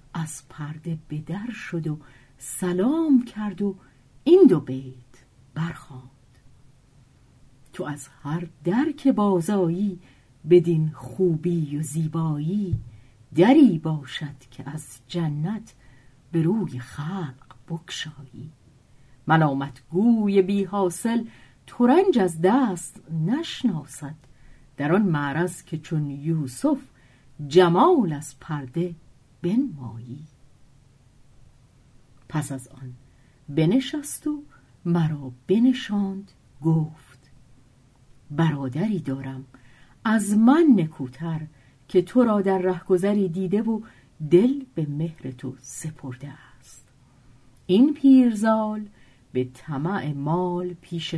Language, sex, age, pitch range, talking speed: Persian, female, 50-69, 130-195 Hz, 95 wpm